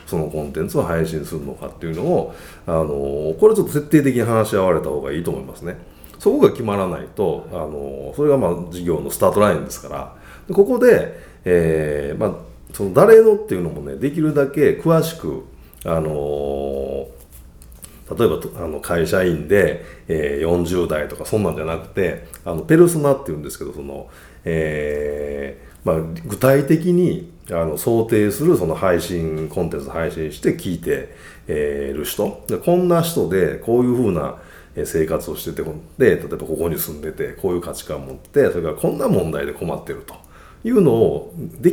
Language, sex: Japanese, male